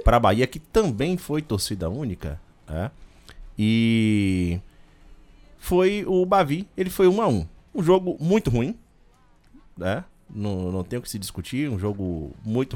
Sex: male